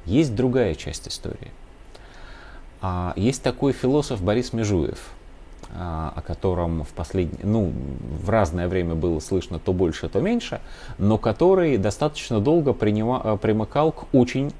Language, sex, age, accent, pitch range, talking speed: Russian, male, 30-49, native, 90-130 Hz, 115 wpm